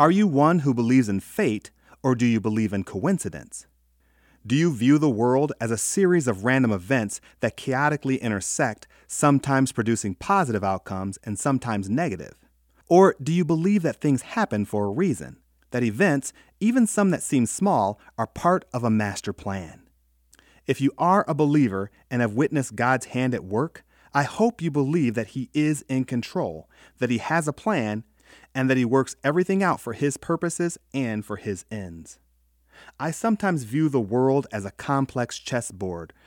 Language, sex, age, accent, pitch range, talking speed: English, male, 30-49, American, 105-150 Hz, 175 wpm